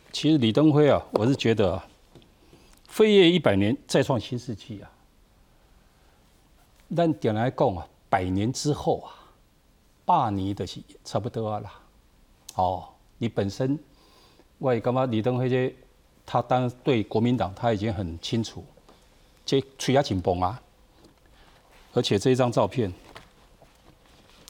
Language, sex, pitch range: Chinese, male, 105-140 Hz